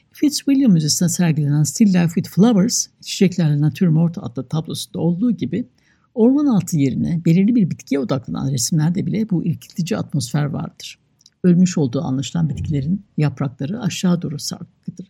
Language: Turkish